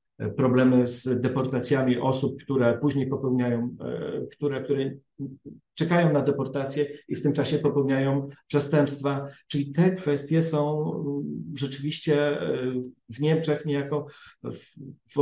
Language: Polish